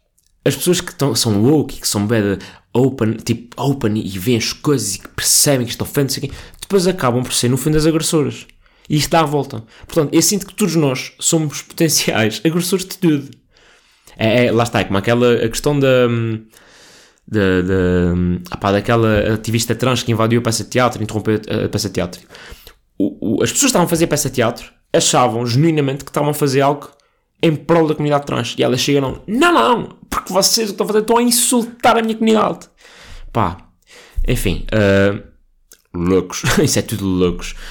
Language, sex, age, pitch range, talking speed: Portuguese, male, 20-39, 100-145 Hz, 190 wpm